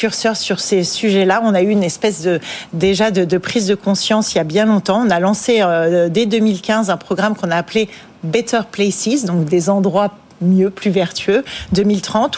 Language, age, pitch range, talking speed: French, 40-59, 185-225 Hz, 195 wpm